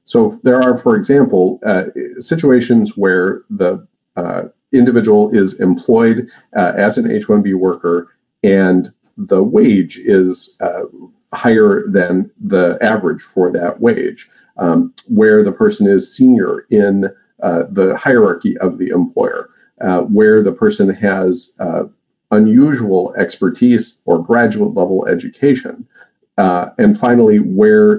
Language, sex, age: English, male, 50-69